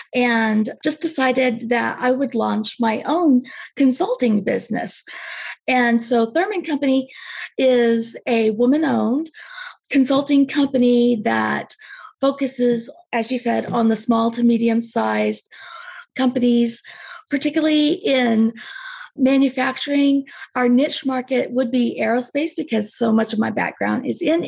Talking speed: 120 wpm